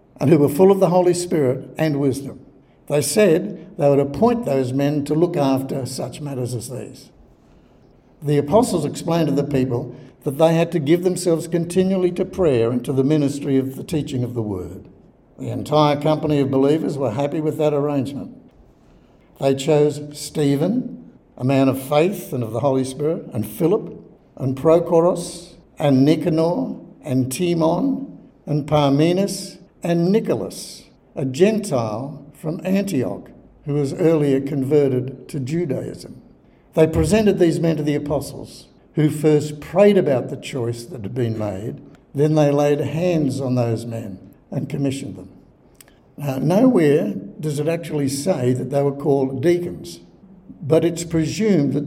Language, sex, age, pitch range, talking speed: English, male, 60-79, 135-170 Hz, 155 wpm